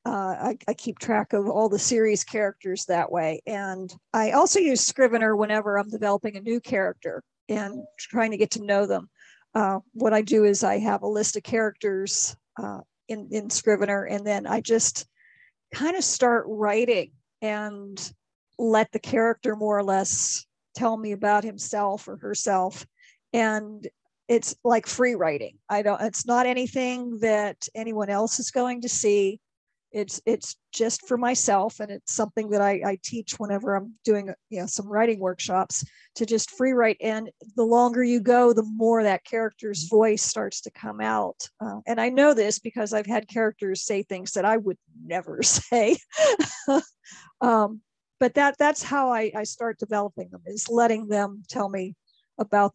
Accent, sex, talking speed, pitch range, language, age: American, female, 175 wpm, 200-230 Hz, English, 50-69